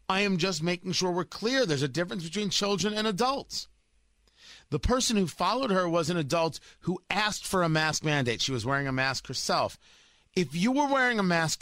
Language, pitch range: English, 135-190 Hz